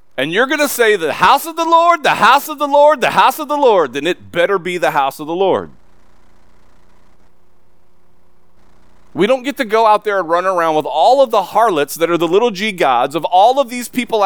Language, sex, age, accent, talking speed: English, male, 40-59, American, 225 wpm